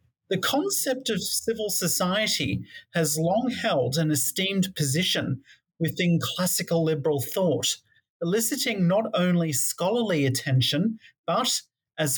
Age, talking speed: 40-59, 110 wpm